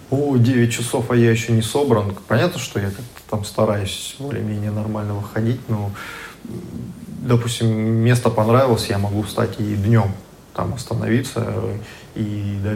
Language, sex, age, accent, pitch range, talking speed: Russian, male, 20-39, native, 105-120 Hz, 140 wpm